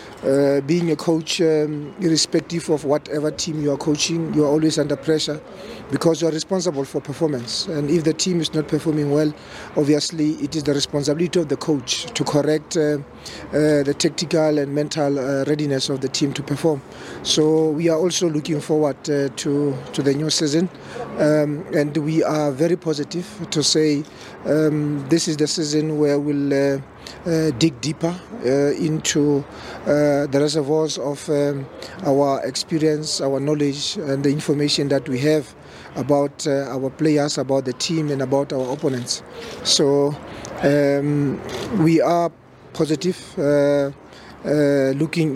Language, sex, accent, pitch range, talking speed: English, male, South African, 140-155 Hz, 160 wpm